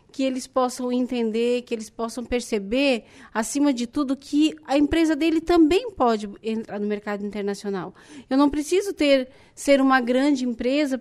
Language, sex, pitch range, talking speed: Portuguese, female, 220-270 Hz, 155 wpm